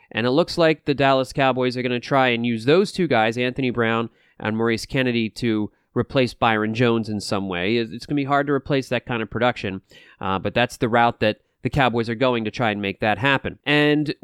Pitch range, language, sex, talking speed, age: 110-145 Hz, English, male, 235 wpm, 30-49